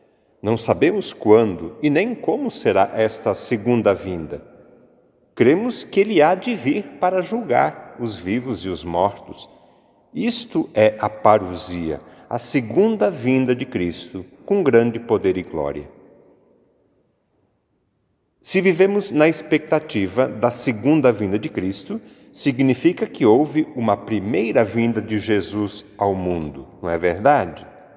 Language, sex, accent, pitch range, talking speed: Portuguese, male, Brazilian, 105-155 Hz, 125 wpm